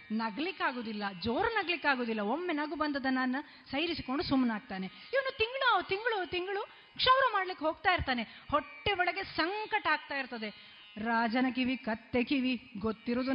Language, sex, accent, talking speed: Kannada, female, native, 125 wpm